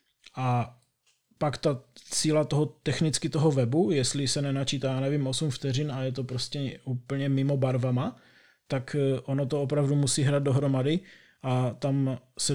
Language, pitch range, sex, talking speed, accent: Czech, 130-150 Hz, male, 155 wpm, native